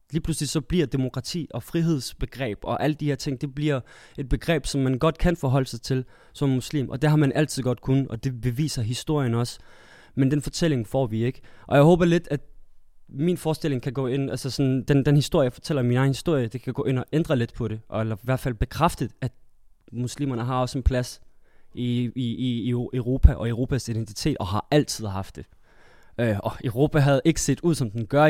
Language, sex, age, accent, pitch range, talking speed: Danish, male, 20-39, native, 115-145 Hz, 220 wpm